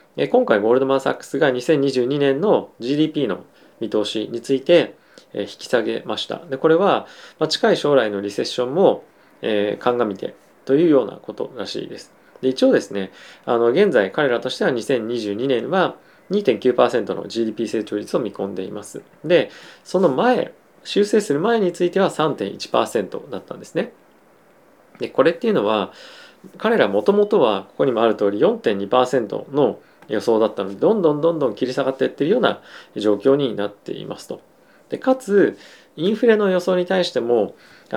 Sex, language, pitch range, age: male, Japanese, 115-165 Hz, 20-39